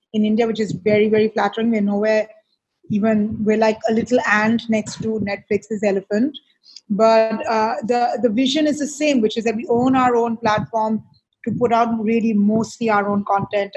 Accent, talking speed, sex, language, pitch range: Indian, 185 wpm, female, English, 210-230 Hz